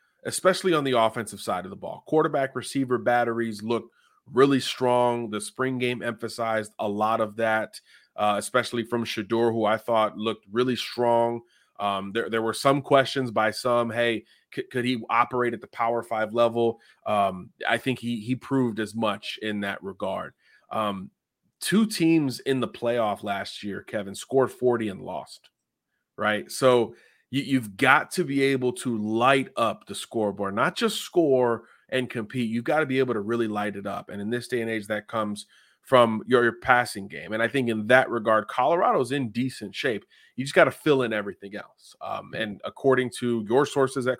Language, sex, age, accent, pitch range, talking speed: English, male, 30-49, American, 110-130 Hz, 190 wpm